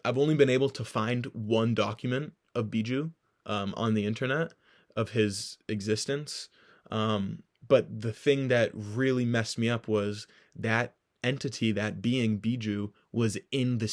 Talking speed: 150 wpm